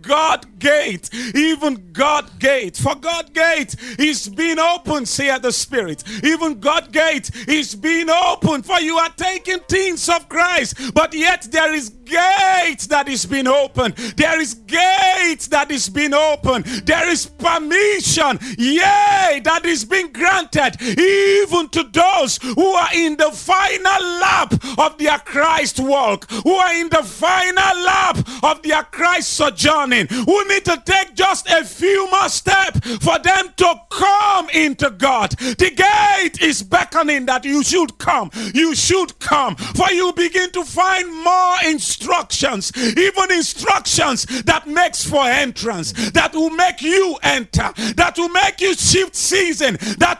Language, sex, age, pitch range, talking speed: English, male, 40-59, 285-365 Hz, 150 wpm